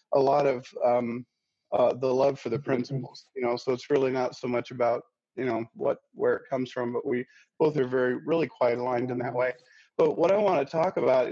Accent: American